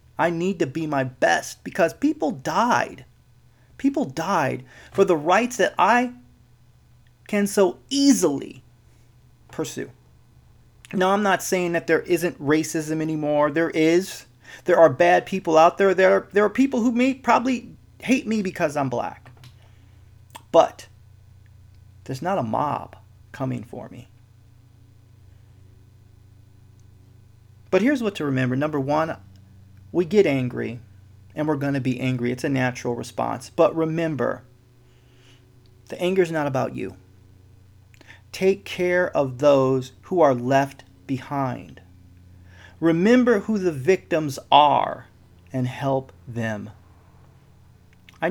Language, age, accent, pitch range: English, 30-49, American, 105-175 Hz